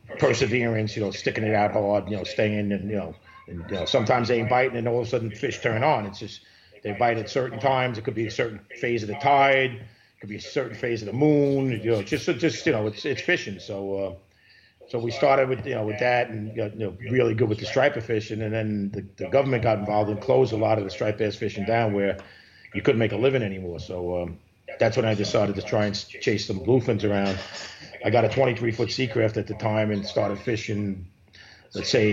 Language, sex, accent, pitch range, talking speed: English, male, American, 105-120 Hz, 255 wpm